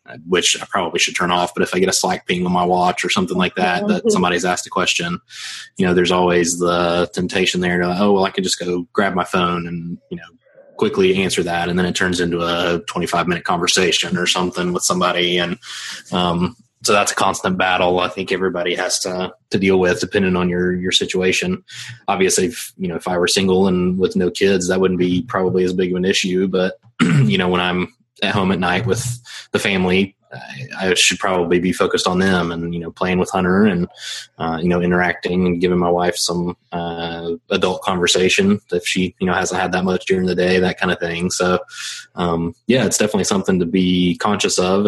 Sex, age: male, 20-39